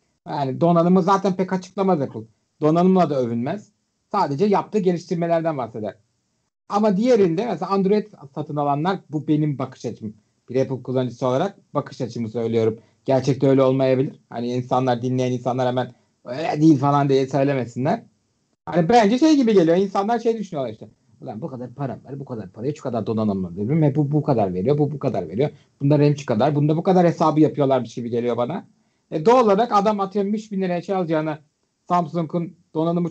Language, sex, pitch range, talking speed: Turkish, male, 135-200 Hz, 170 wpm